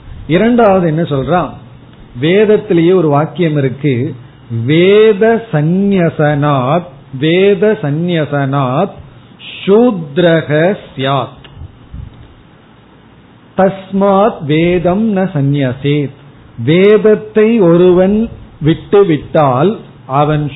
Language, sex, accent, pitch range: Tamil, male, native, 140-195 Hz